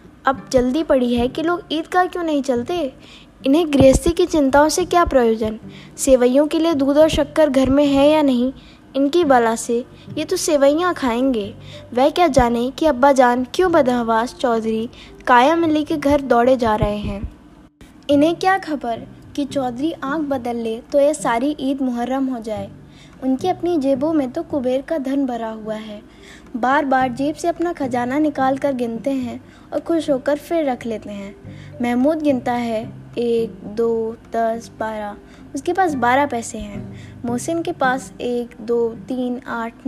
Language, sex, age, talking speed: Hindi, female, 20-39, 170 wpm